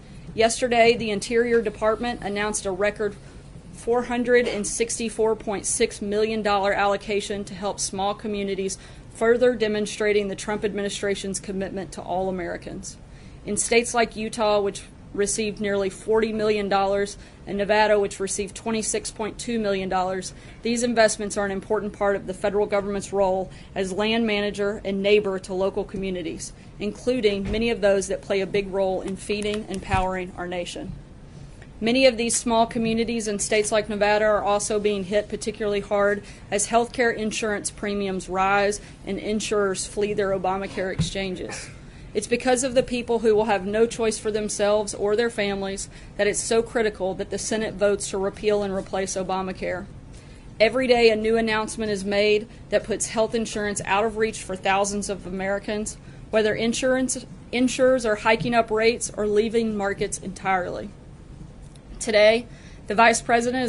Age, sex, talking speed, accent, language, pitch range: 30-49, female, 150 wpm, American, English, 195-220 Hz